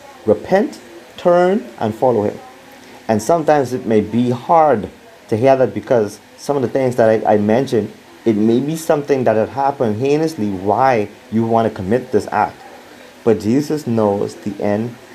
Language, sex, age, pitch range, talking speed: English, male, 30-49, 105-145 Hz, 170 wpm